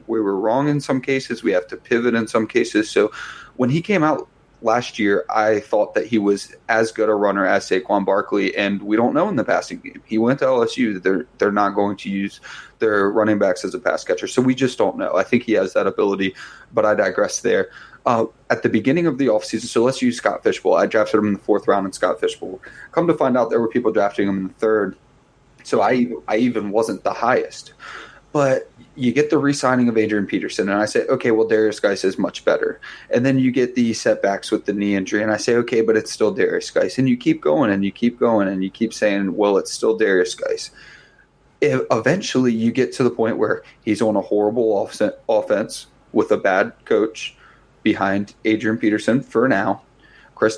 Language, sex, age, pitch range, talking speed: English, male, 20-39, 105-135 Hz, 225 wpm